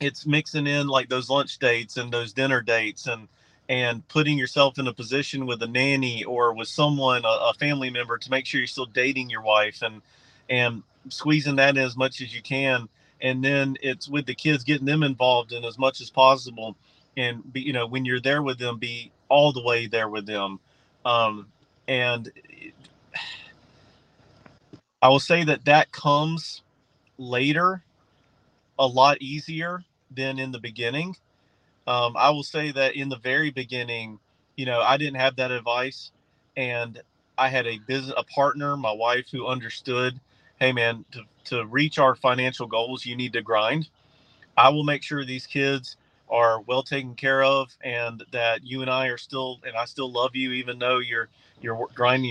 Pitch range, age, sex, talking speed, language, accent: 120-140 Hz, 40-59, male, 180 wpm, English, American